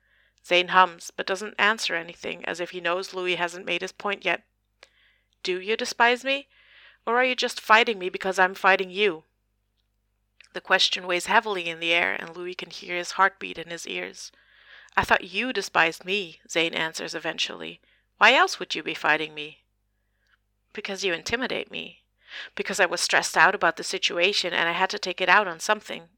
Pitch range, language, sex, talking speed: 170-205 Hz, English, female, 190 wpm